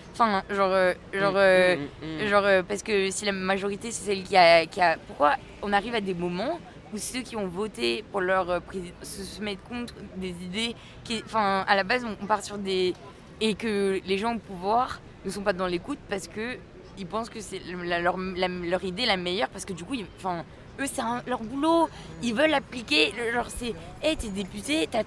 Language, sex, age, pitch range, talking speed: French, female, 20-39, 190-230 Hz, 215 wpm